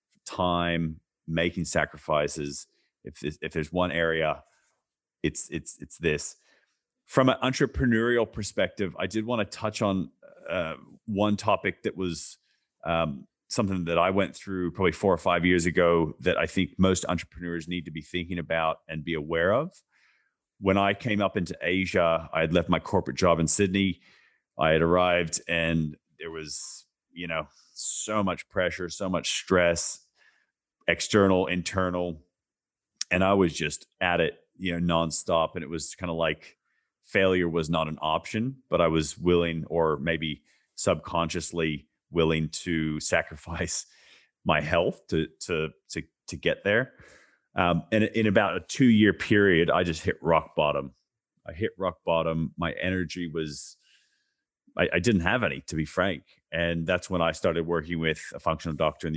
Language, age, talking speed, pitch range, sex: English, 30-49, 160 wpm, 80-95 Hz, male